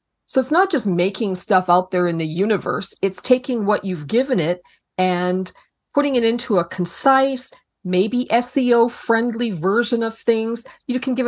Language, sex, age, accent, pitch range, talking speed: English, female, 40-59, American, 180-255 Hz, 165 wpm